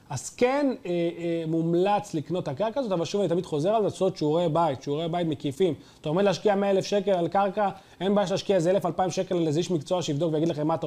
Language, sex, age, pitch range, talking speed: Hebrew, male, 30-49, 150-200 Hz, 245 wpm